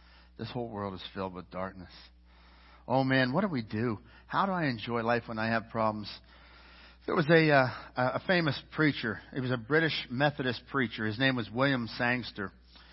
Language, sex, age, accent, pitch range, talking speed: English, male, 60-79, American, 100-135 Hz, 185 wpm